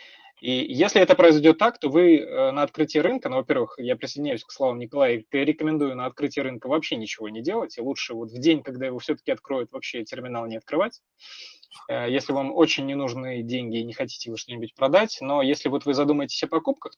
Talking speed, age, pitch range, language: 200 wpm, 20-39, 125-155 Hz, Russian